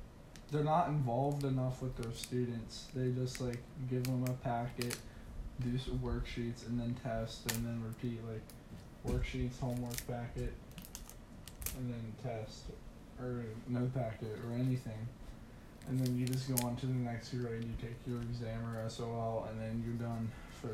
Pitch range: 115-125 Hz